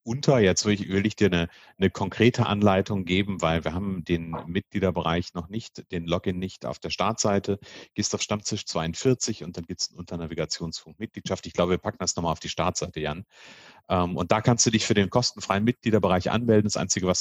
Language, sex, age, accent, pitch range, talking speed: German, male, 40-59, German, 90-110 Hz, 205 wpm